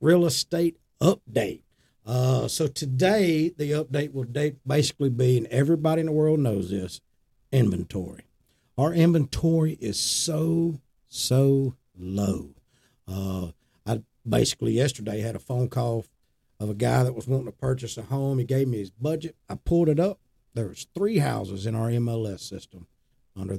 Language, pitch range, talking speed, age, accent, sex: English, 110-150 Hz, 155 wpm, 50-69, American, male